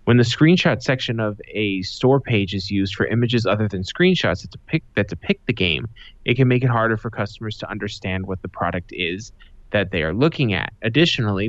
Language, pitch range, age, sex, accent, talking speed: English, 100-120 Hz, 20-39, male, American, 205 wpm